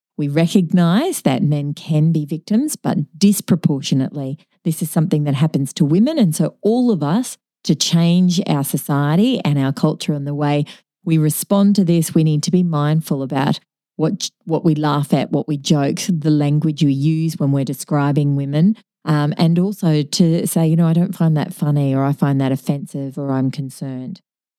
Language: English